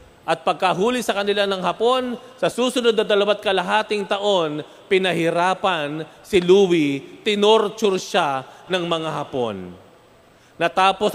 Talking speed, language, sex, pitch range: 115 wpm, Filipino, male, 130-175 Hz